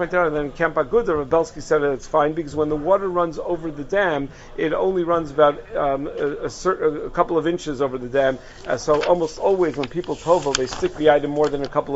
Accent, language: American, English